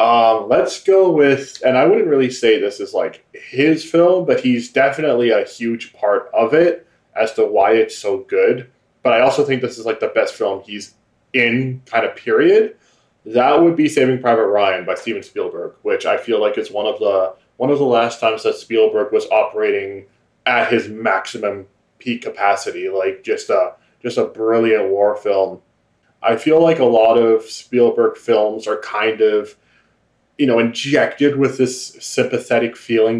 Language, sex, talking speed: English, male, 180 wpm